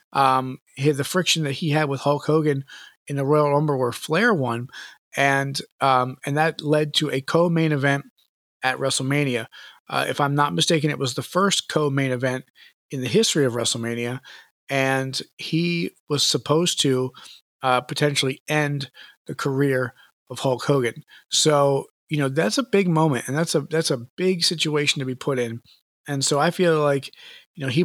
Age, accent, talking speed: 40-59, American, 180 wpm